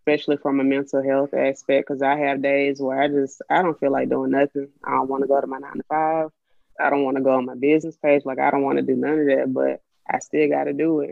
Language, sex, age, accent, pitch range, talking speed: English, female, 20-39, American, 130-145 Hz, 290 wpm